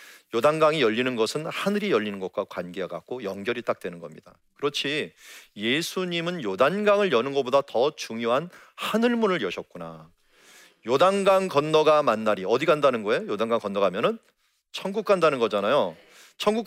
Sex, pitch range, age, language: male, 120-195 Hz, 40-59, Korean